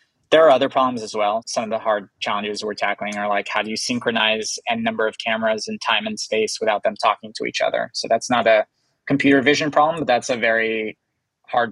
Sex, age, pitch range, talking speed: male, 20-39, 110-150 Hz, 230 wpm